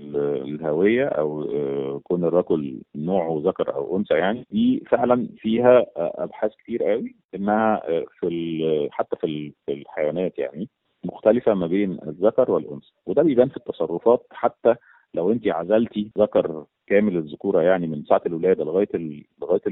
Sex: male